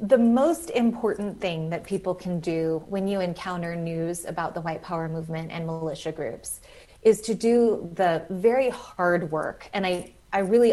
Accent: American